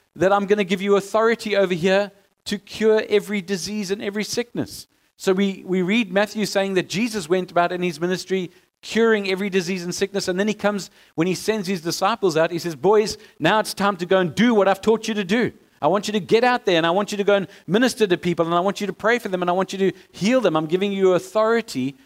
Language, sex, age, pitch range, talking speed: English, male, 50-69, 160-205 Hz, 260 wpm